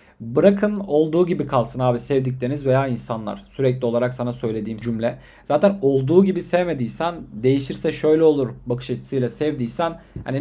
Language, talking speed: Turkish, 140 wpm